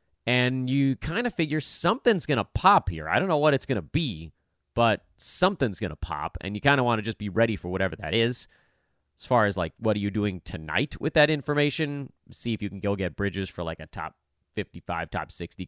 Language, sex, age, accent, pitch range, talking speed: English, male, 30-49, American, 90-145 Hz, 235 wpm